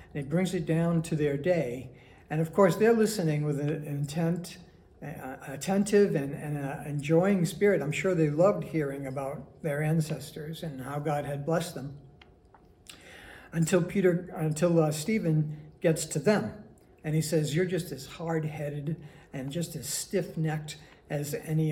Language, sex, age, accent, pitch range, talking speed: English, male, 60-79, American, 140-165 Hz, 155 wpm